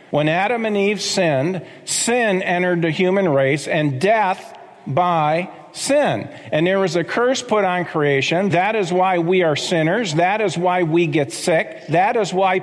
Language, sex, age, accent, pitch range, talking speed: English, male, 50-69, American, 170-235 Hz, 175 wpm